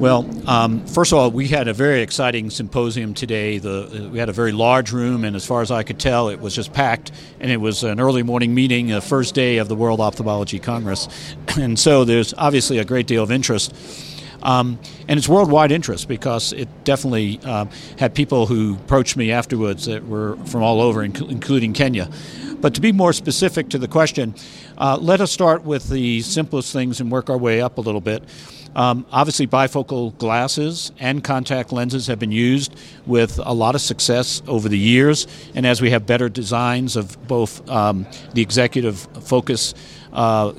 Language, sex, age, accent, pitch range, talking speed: English, male, 50-69, American, 115-135 Hz, 190 wpm